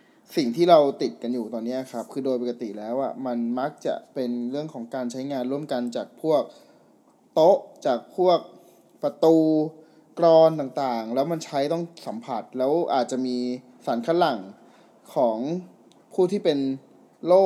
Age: 20-39